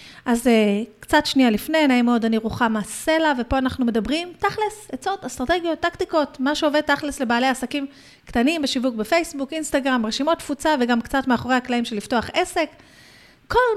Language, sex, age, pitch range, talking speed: Hebrew, female, 30-49, 230-295 Hz, 155 wpm